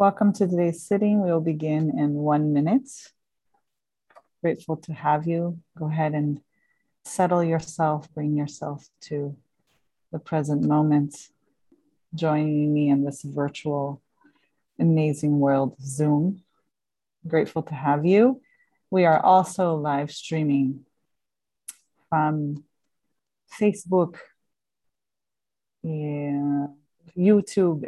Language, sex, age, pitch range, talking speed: English, female, 30-49, 145-170 Hz, 100 wpm